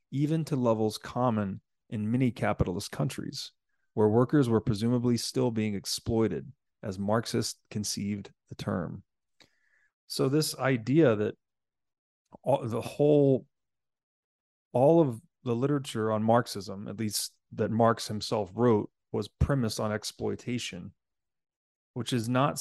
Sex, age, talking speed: male, 30-49, 120 wpm